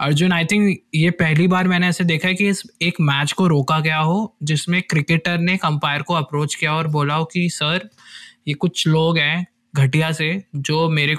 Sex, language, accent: male, Hindi, native